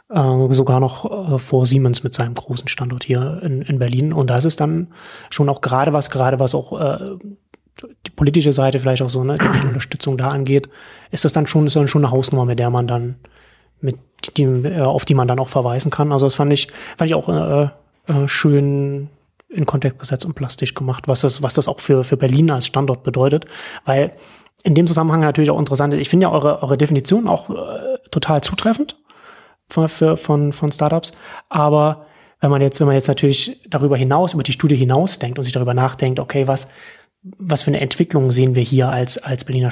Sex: male